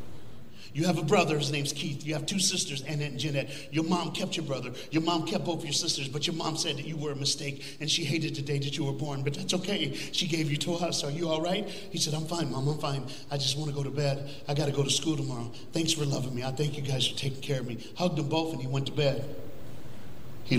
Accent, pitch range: American, 125-155 Hz